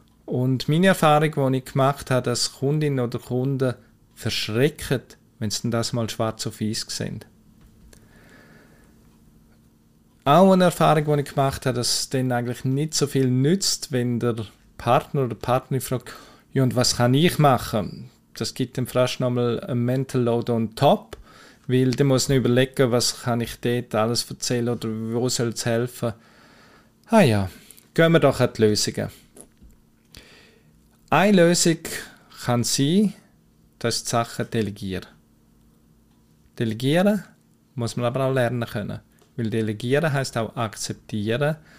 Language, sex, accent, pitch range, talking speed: German, male, Austrian, 115-135 Hz, 150 wpm